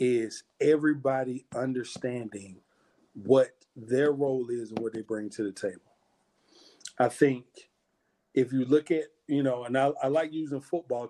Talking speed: 150 wpm